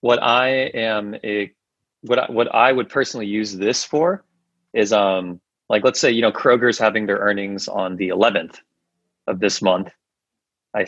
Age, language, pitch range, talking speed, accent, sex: 30-49, English, 105-125 Hz, 170 wpm, American, male